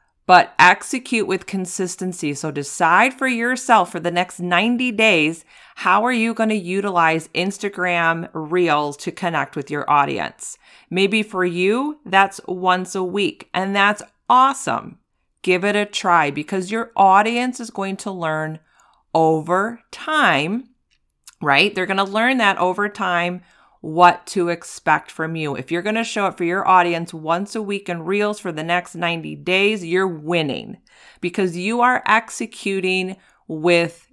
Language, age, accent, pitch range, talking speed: English, 40-59, American, 175-215 Hz, 155 wpm